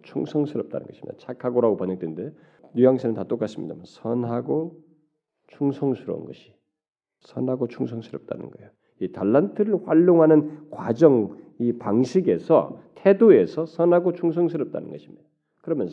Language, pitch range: Korean, 125-180 Hz